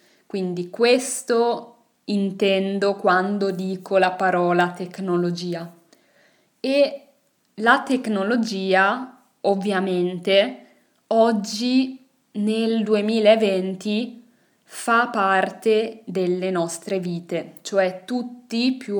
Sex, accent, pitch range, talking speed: female, native, 185-235 Hz, 75 wpm